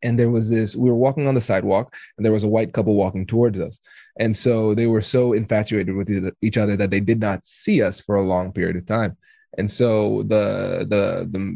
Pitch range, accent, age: 105-135 Hz, American, 20-39